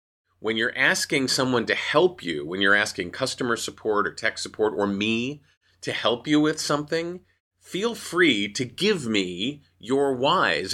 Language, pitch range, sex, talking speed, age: English, 95-130 Hz, male, 160 wpm, 40-59